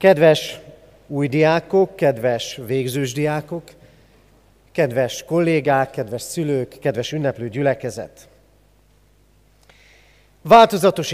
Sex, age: male, 40-59